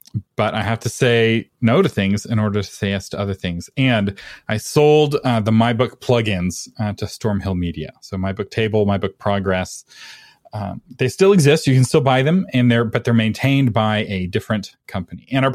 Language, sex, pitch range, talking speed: English, male, 100-135 Hz, 200 wpm